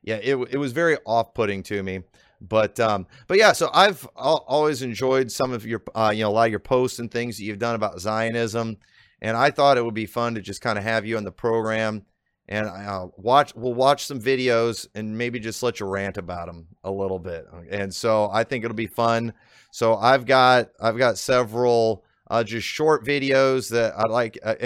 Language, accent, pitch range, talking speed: English, American, 105-130 Hz, 220 wpm